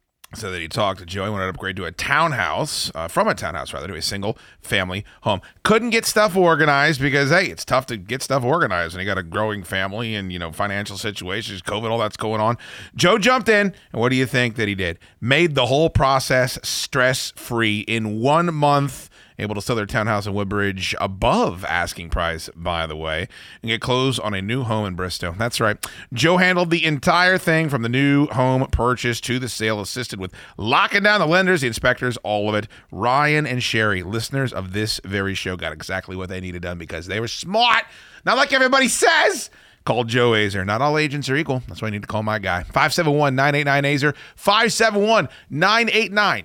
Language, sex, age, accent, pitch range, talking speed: English, male, 30-49, American, 100-145 Hz, 205 wpm